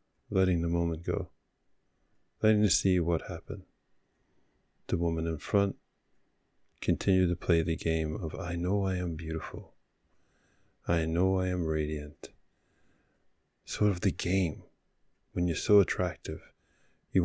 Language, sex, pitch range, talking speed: English, male, 85-105 Hz, 130 wpm